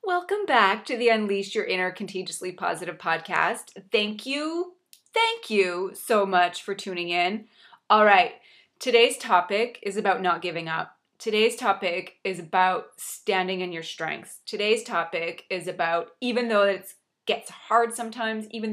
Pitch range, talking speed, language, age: 185-235 Hz, 150 wpm, English, 30-49